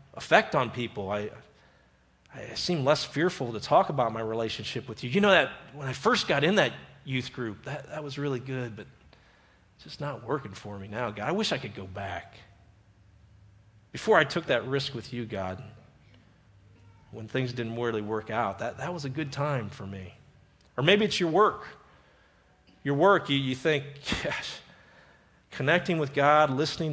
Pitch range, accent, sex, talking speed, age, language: 110-155 Hz, American, male, 185 wpm, 40-59, English